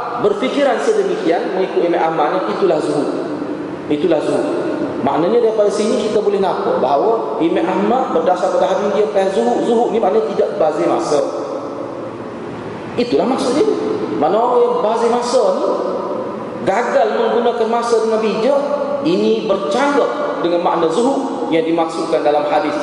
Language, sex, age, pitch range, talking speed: Malay, male, 30-49, 215-275 Hz, 130 wpm